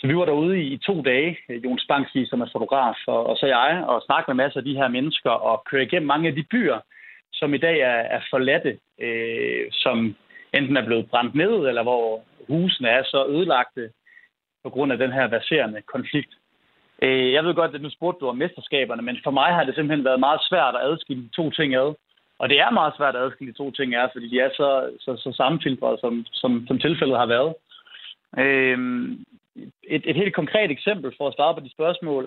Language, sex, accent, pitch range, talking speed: Danish, male, native, 130-175 Hz, 220 wpm